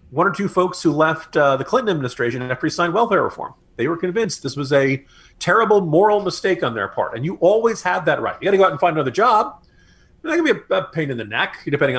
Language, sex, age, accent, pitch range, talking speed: English, male, 40-59, American, 135-210 Hz, 265 wpm